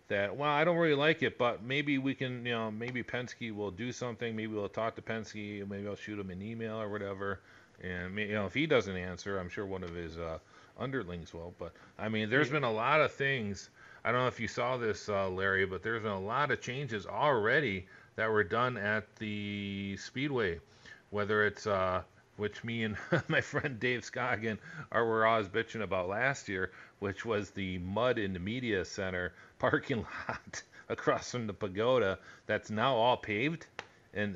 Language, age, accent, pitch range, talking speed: English, 40-59, American, 100-125 Hz, 200 wpm